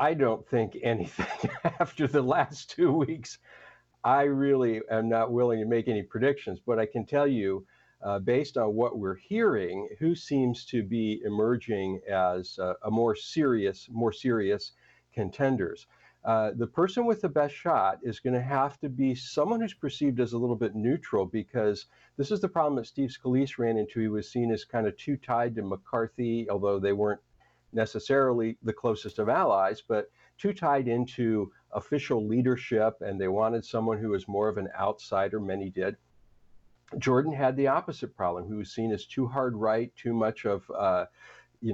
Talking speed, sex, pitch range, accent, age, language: 180 wpm, male, 110-135 Hz, American, 50-69, English